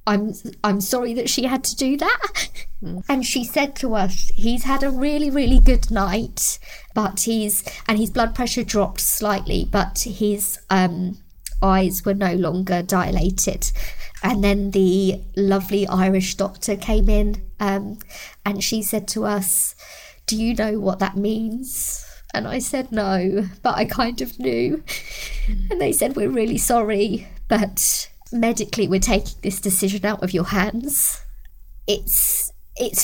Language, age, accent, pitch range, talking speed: English, 20-39, British, 190-220 Hz, 155 wpm